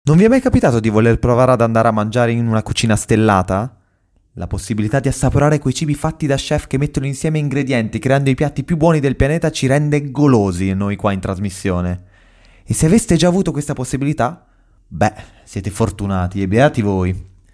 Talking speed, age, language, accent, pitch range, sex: 190 wpm, 20-39, Italian, native, 100-140 Hz, male